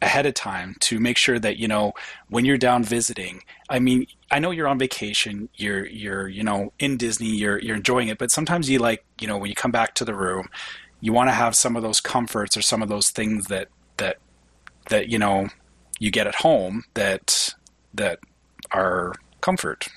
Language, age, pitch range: English, 30-49, 100-125 Hz